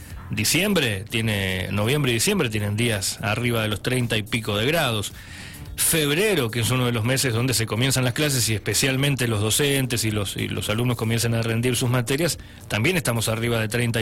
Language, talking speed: Spanish, 195 wpm